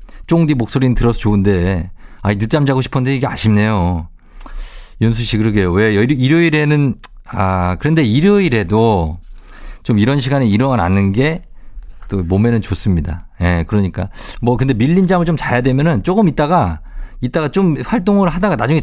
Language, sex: Korean, male